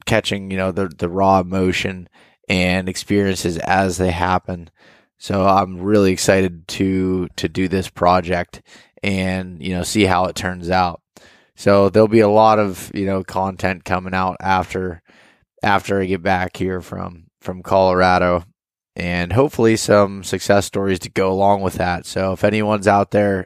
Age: 20-39